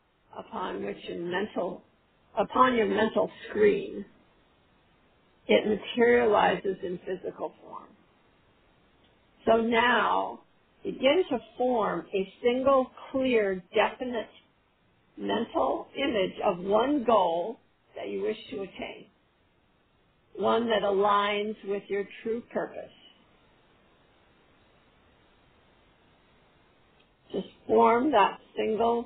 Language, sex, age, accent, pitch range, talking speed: English, female, 50-69, American, 195-235 Hz, 90 wpm